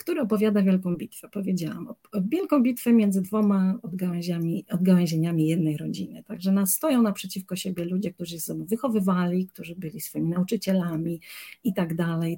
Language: Polish